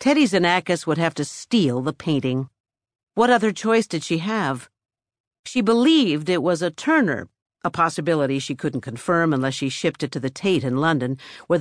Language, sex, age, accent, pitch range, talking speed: English, female, 50-69, American, 135-180 Hz, 180 wpm